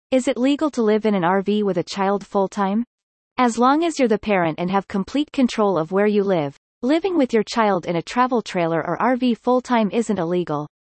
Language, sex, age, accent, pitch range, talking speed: English, female, 30-49, American, 190-255 Hz, 215 wpm